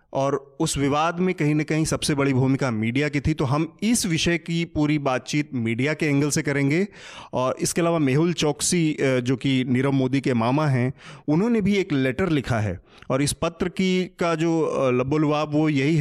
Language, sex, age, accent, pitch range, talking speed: Hindi, male, 30-49, native, 130-155 Hz, 195 wpm